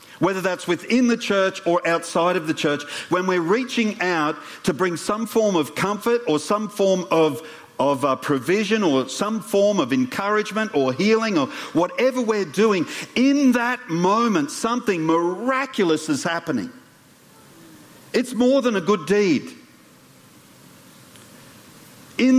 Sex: male